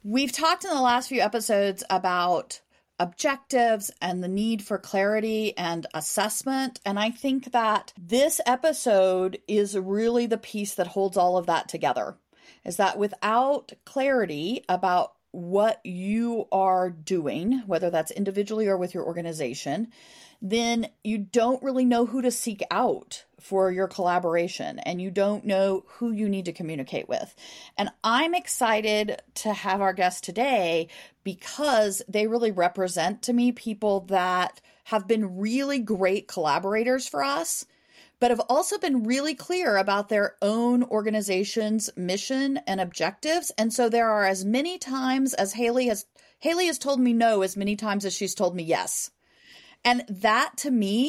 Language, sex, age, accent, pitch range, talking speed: English, female, 40-59, American, 190-245 Hz, 155 wpm